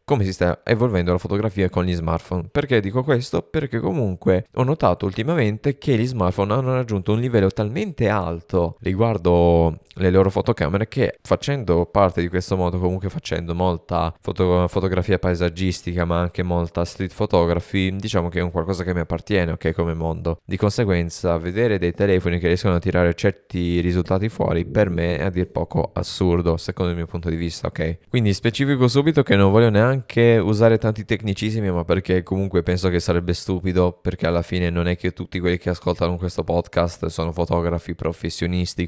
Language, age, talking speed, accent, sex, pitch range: Italian, 20-39, 180 wpm, native, male, 85-105 Hz